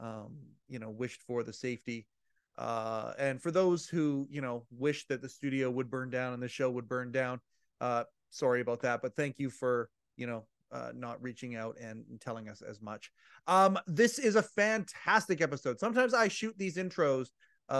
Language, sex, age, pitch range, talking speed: English, male, 30-49, 130-165 Hz, 195 wpm